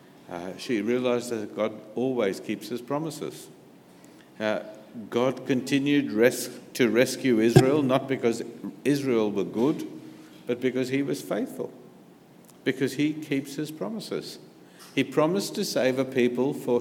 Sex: male